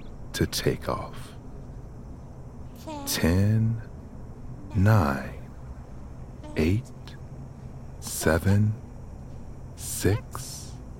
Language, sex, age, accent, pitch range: English, male, 50-69, American, 105-125 Hz